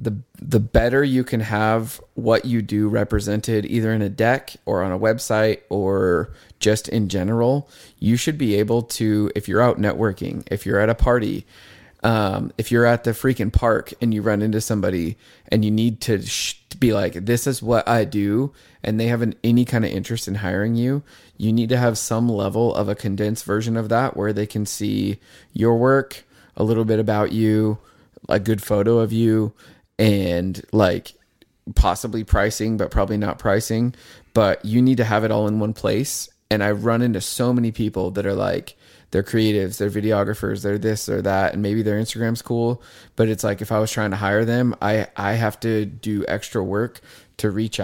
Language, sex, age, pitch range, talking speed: English, male, 20-39, 105-115 Hz, 200 wpm